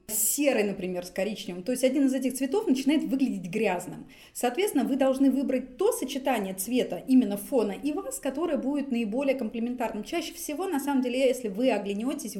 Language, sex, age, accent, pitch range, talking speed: Russian, female, 30-49, native, 225-275 Hz, 175 wpm